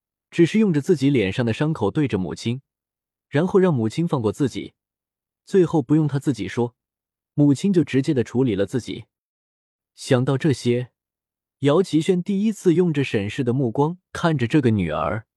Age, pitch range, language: 20-39, 115-170 Hz, Chinese